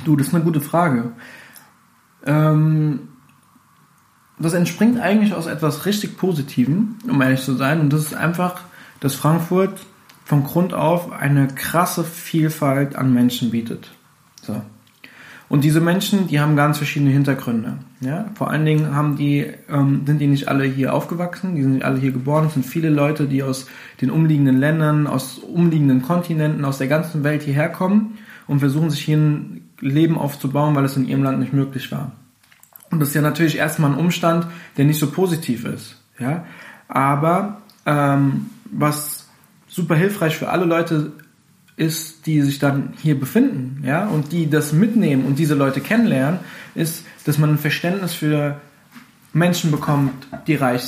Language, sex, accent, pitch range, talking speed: German, male, German, 140-170 Hz, 165 wpm